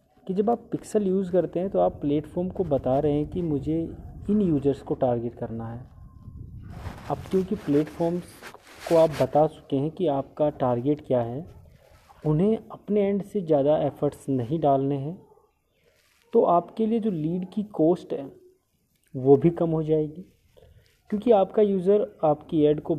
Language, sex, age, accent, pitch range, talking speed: Hindi, male, 30-49, native, 135-180 Hz, 165 wpm